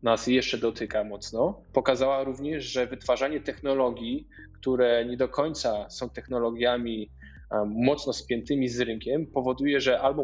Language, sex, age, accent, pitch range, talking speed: Polish, male, 20-39, native, 120-145 Hz, 130 wpm